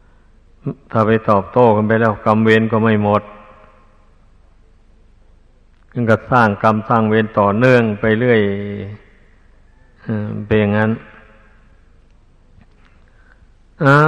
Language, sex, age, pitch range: Thai, male, 60-79, 100-120 Hz